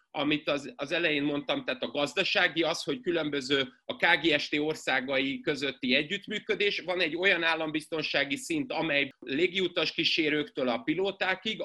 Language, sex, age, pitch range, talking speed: Hungarian, male, 30-49, 145-175 Hz, 135 wpm